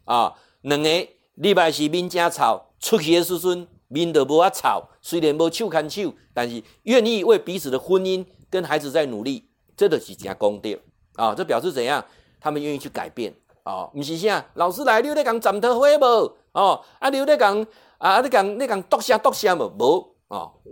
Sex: male